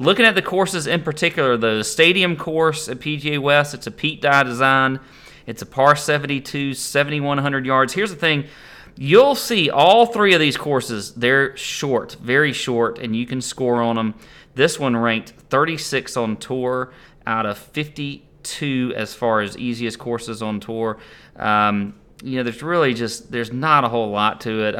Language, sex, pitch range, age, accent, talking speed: English, male, 115-145 Hz, 30-49, American, 175 wpm